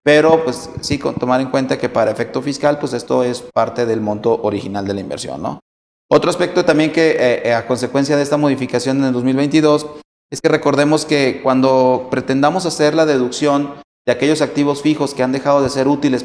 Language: Spanish